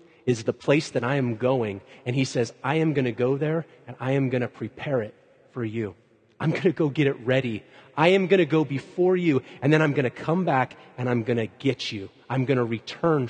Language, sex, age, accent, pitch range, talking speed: English, male, 30-49, American, 125-175 Hz, 255 wpm